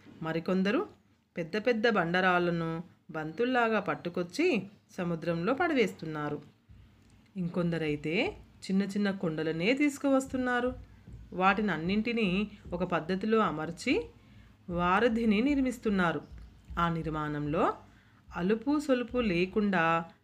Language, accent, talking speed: Telugu, native, 70 wpm